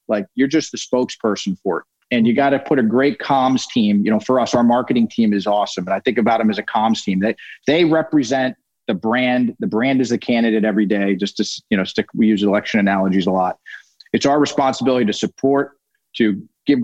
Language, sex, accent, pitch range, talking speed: English, male, American, 115-155 Hz, 230 wpm